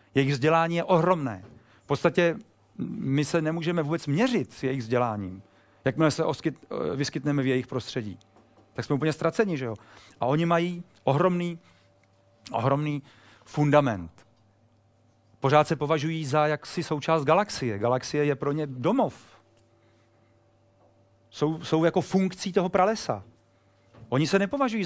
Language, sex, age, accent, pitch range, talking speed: Czech, male, 40-59, native, 115-160 Hz, 130 wpm